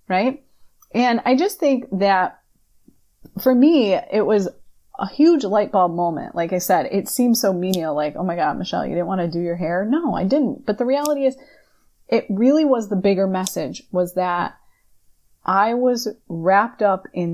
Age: 30-49